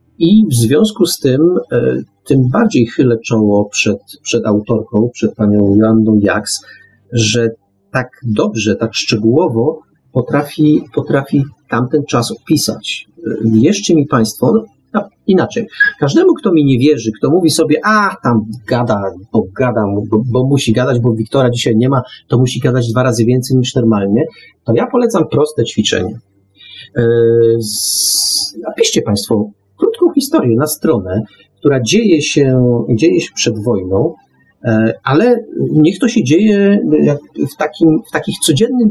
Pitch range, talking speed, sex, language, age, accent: 110-160 Hz, 140 wpm, male, Polish, 40-59, native